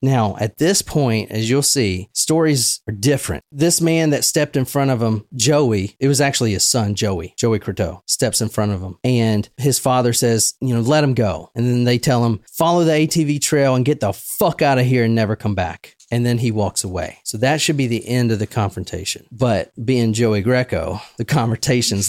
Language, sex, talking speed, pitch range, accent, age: English, male, 220 wpm, 105-140 Hz, American, 30-49